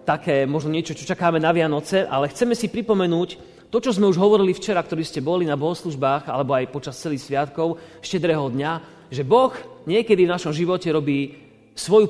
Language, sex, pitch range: Slovak, male, 145-195 Hz